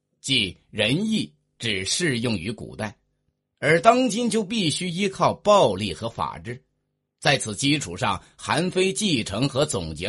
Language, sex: Chinese, male